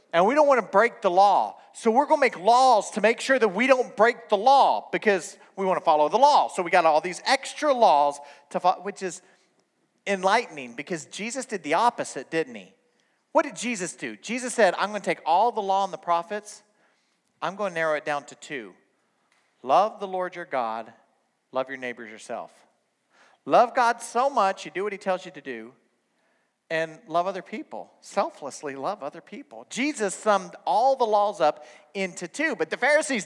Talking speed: 200 wpm